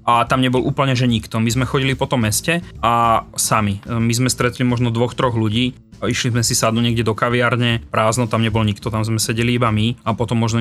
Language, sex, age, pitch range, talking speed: Slovak, male, 30-49, 110-125 Hz, 225 wpm